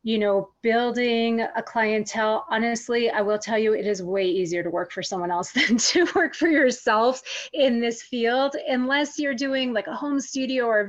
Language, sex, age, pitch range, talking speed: English, female, 30-49, 205-240 Hz, 195 wpm